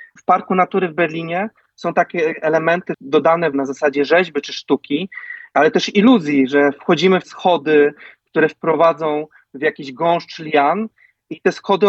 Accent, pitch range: native, 155-190 Hz